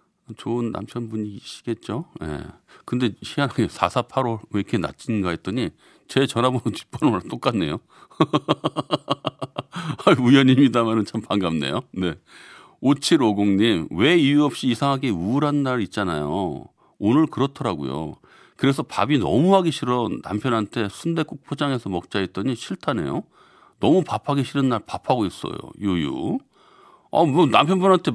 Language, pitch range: Korean, 105-145 Hz